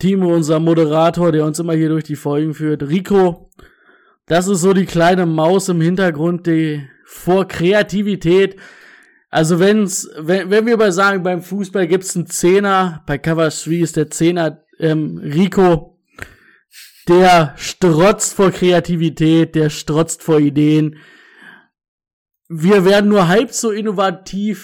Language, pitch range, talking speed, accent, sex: German, 160-185 Hz, 140 wpm, German, male